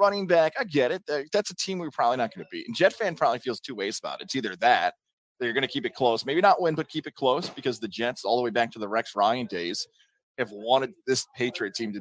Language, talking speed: English, 285 wpm